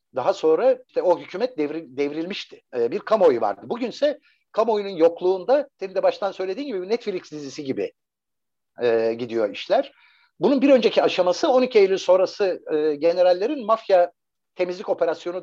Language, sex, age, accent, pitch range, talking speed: Turkish, male, 60-79, native, 175-270 Hz, 150 wpm